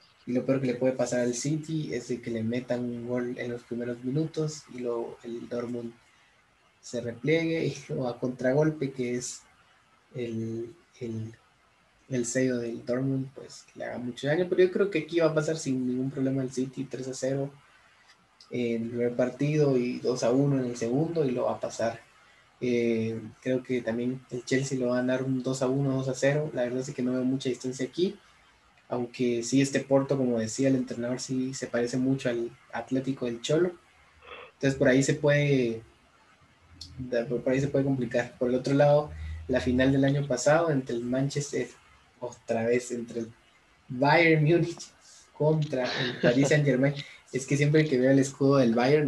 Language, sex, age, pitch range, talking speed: Spanish, male, 20-39, 120-140 Hz, 195 wpm